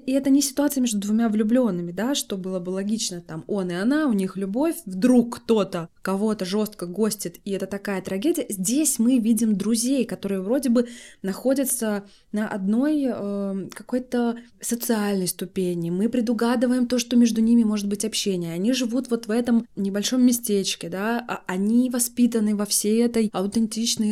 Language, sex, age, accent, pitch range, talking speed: Russian, female, 20-39, native, 195-245 Hz, 160 wpm